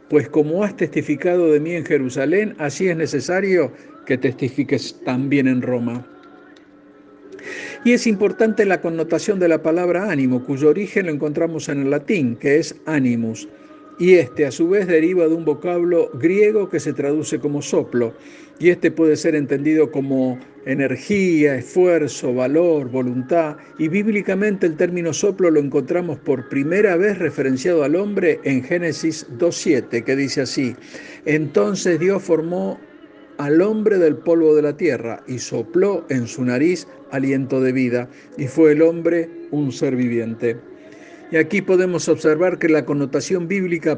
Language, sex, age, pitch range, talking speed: Spanish, male, 50-69, 135-175 Hz, 155 wpm